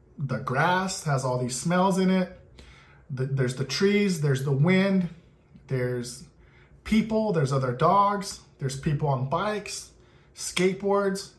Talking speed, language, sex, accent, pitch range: 125 wpm, English, male, American, 130-170 Hz